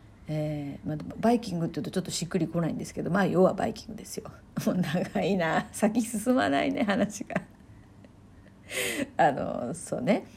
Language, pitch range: Japanese, 165-250 Hz